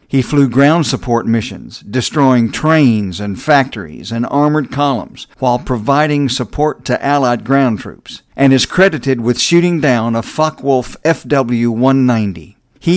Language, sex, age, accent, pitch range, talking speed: English, male, 50-69, American, 115-140 Hz, 135 wpm